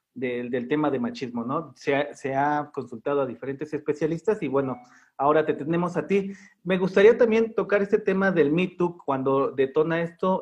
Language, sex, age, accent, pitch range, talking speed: Spanish, male, 40-59, Mexican, 135-170 Hz, 185 wpm